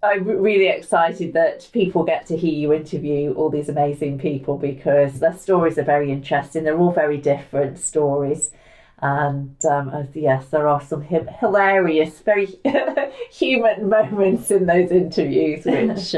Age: 40-59